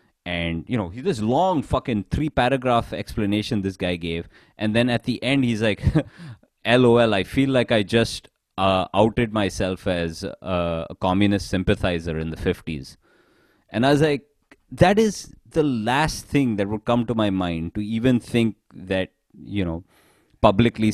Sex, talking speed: male, 165 wpm